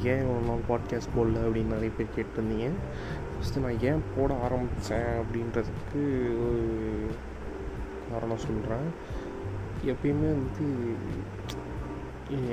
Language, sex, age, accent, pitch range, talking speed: Tamil, male, 20-39, native, 110-125 Hz, 100 wpm